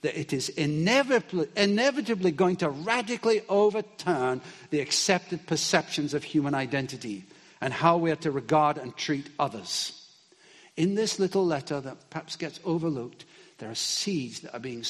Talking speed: 155 wpm